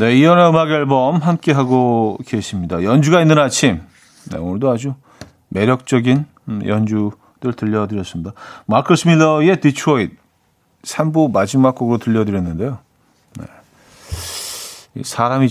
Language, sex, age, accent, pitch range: Korean, male, 40-59, native, 120-155 Hz